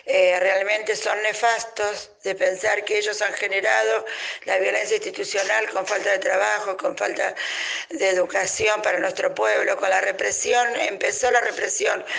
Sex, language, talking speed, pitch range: female, Spanish, 150 wpm, 190-235 Hz